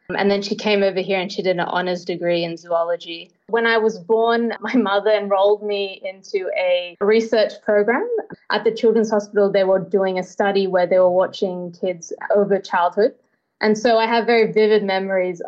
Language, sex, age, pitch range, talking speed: Tamil, female, 20-39, 180-215 Hz, 190 wpm